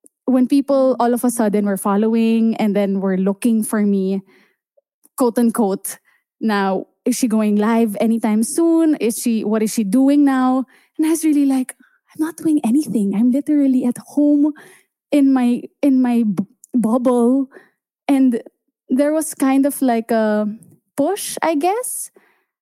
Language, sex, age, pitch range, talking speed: English, female, 20-39, 205-260 Hz, 155 wpm